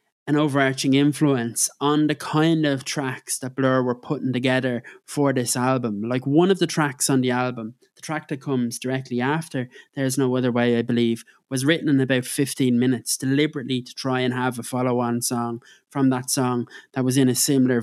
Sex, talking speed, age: male, 200 wpm, 20-39